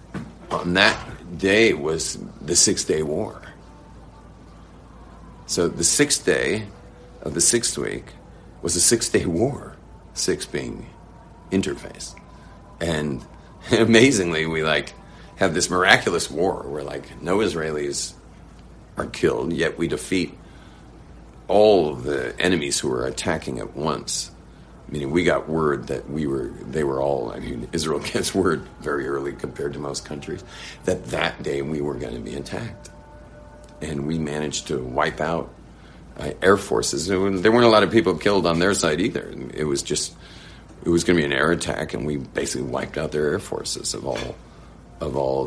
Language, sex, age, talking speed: English, male, 50-69, 160 wpm